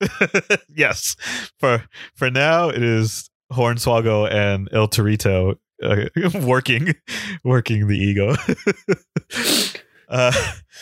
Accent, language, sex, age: American, English, male, 20-39